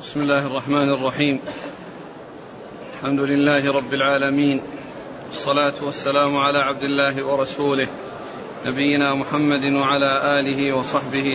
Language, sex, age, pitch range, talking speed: Arabic, male, 40-59, 140-150 Hz, 100 wpm